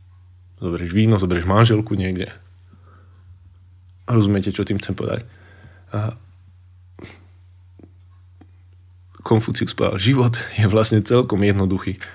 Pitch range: 90-110 Hz